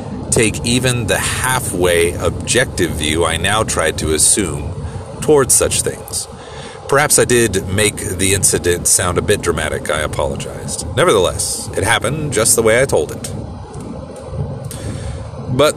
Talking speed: 135 wpm